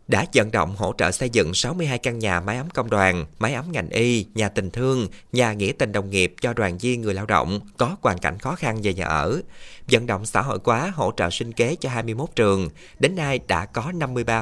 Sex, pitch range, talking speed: male, 100-140 Hz, 235 wpm